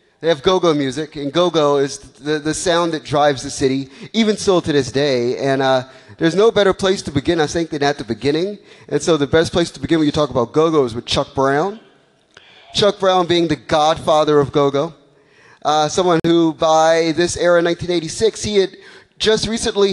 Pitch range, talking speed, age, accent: 145-195 Hz, 200 wpm, 30-49, American